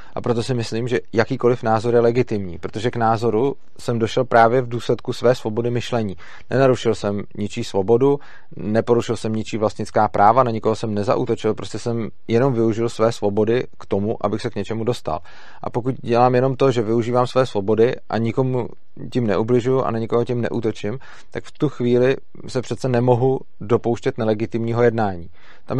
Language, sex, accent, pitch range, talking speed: Czech, male, native, 110-125 Hz, 175 wpm